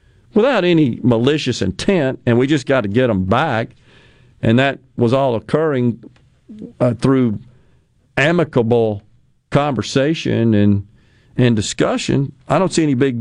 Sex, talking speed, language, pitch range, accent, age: male, 130 wpm, English, 110-130 Hz, American, 50-69